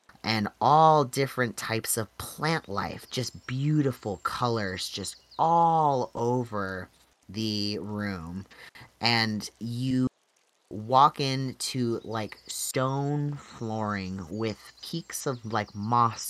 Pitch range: 100-130 Hz